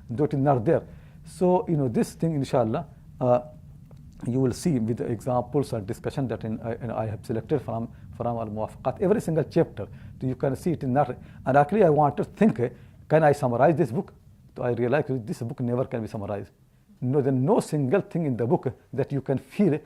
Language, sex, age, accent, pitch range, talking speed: English, male, 60-79, Indian, 115-150 Hz, 225 wpm